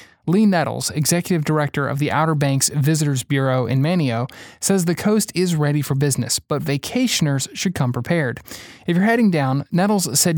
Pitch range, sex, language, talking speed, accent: 135-175 Hz, male, English, 175 wpm, American